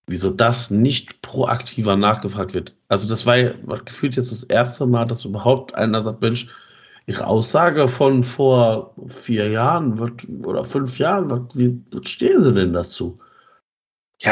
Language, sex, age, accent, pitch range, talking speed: German, male, 50-69, German, 100-120 Hz, 145 wpm